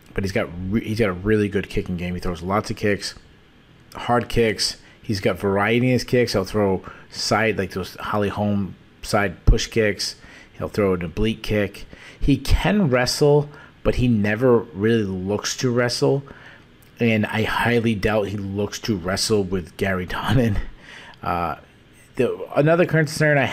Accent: American